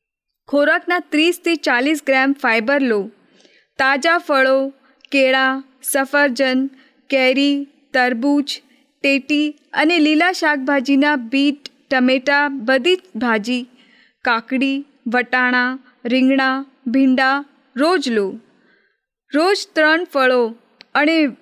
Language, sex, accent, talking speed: Gujarati, female, native, 80 wpm